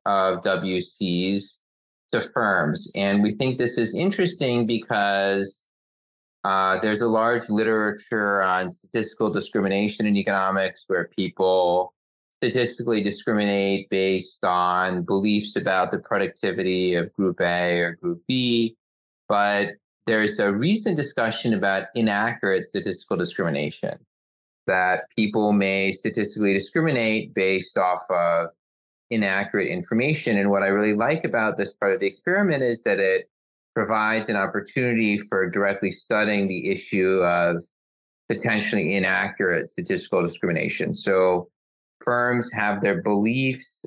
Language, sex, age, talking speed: English, male, 30-49, 120 wpm